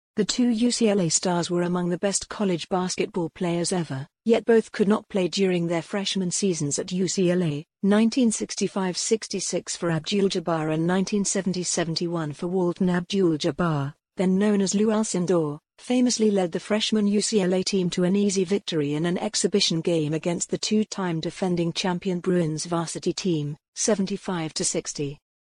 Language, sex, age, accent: English, female, 50-69, British